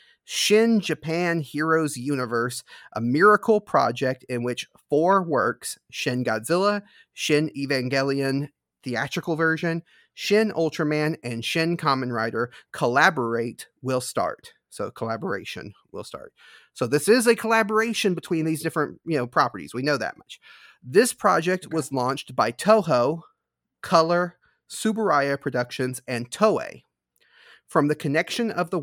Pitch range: 130-175 Hz